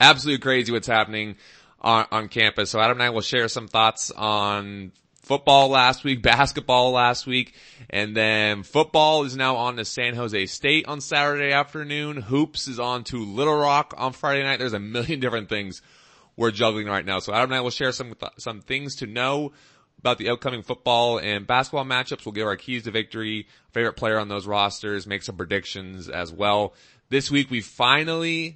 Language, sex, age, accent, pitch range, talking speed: English, male, 30-49, American, 100-130 Hz, 190 wpm